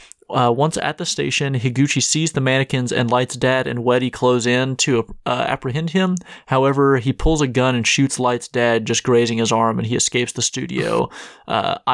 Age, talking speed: 30-49, 195 wpm